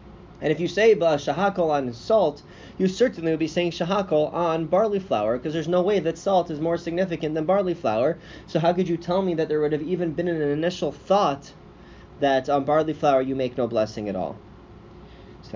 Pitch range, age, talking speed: 140-175 Hz, 30-49, 210 wpm